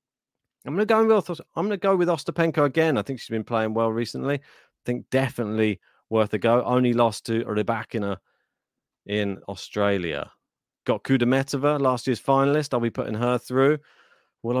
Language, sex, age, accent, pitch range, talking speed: English, male, 30-49, British, 115-140 Hz, 155 wpm